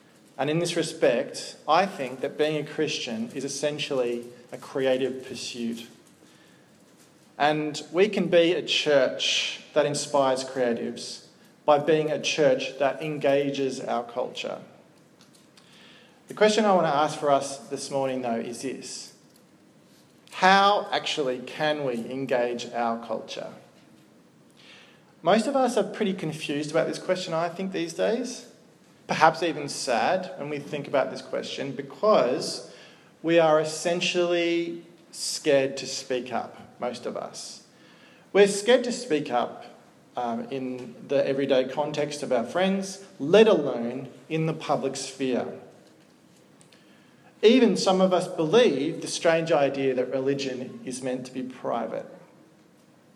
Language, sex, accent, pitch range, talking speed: English, male, Australian, 130-170 Hz, 135 wpm